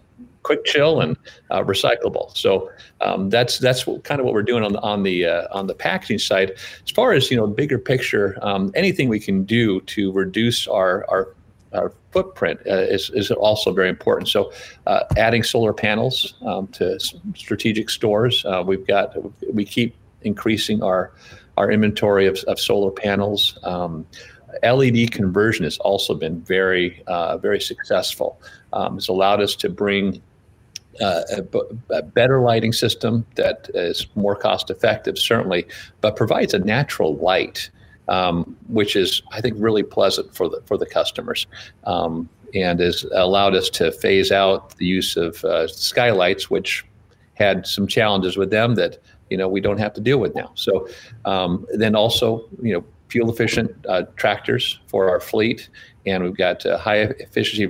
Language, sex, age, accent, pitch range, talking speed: English, male, 50-69, American, 95-115 Hz, 170 wpm